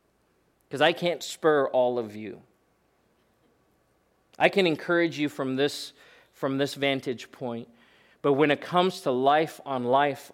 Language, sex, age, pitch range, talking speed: English, male, 40-59, 135-180 Hz, 145 wpm